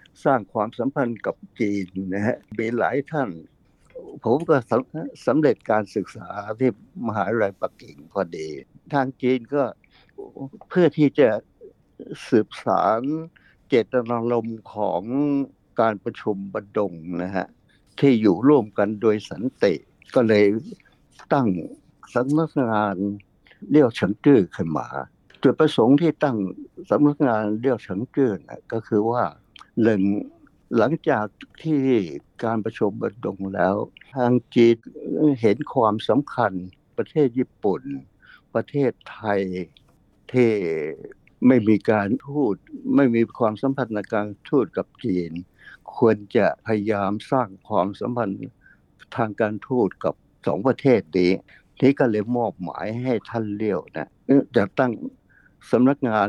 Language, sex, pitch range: Thai, male, 105-140 Hz